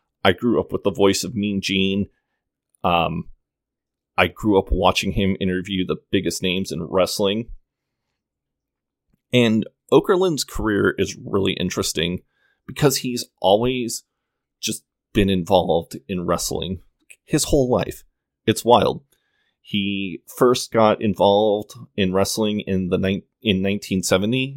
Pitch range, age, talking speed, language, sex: 90-105 Hz, 30-49, 120 wpm, English, male